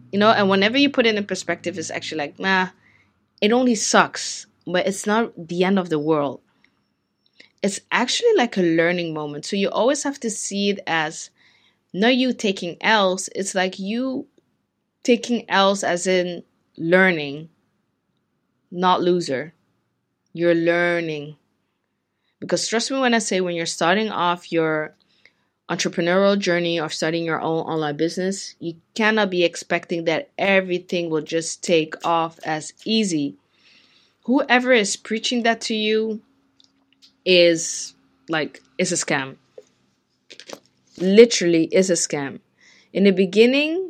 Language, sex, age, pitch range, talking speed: English, female, 20-39, 165-215 Hz, 140 wpm